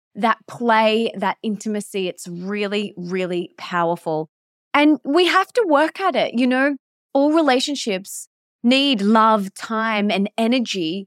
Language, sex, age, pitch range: English, female, 20-39, 195-240 Hz